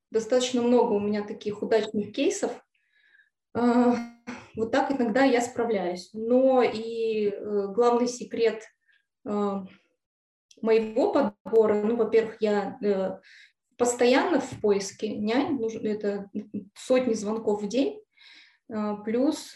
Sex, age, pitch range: female, 20-39, 210-245 Hz